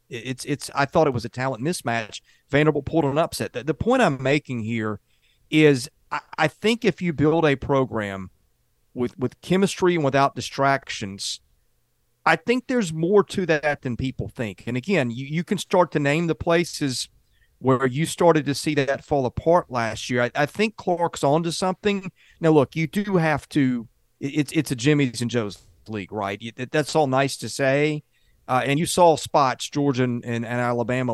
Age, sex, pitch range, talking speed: 40-59, male, 120-155 Hz, 190 wpm